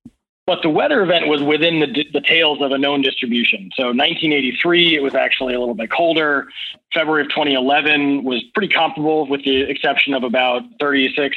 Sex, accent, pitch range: male, American, 125-145 Hz